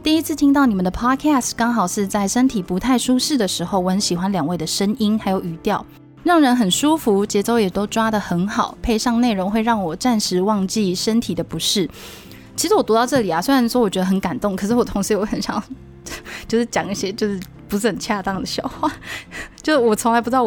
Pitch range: 190-235 Hz